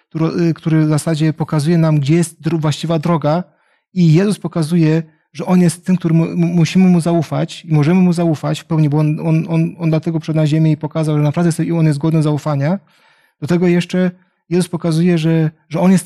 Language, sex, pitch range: Polish, male, 150-175 Hz